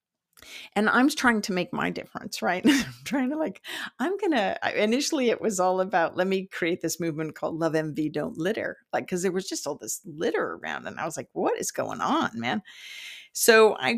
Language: English